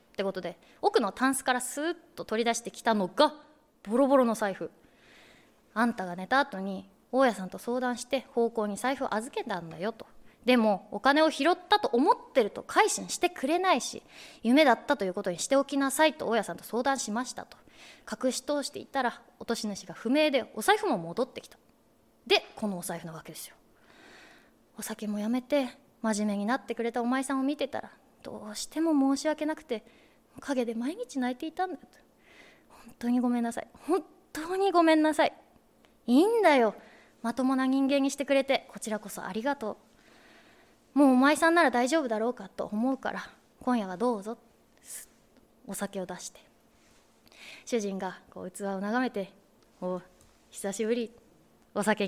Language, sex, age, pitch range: Japanese, female, 20-39, 210-285 Hz